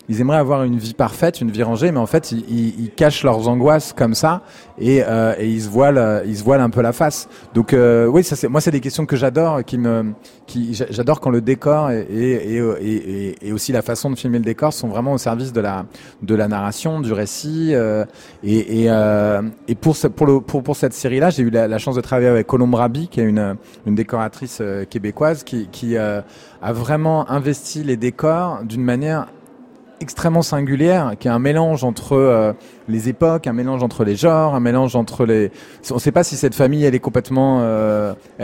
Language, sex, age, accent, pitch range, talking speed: French, male, 30-49, French, 115-145 Hz, 220 wpm